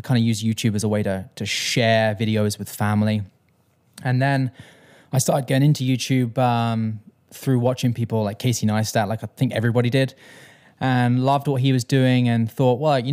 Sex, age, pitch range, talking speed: male, 20-39, 110-130 Hz, 190 wpm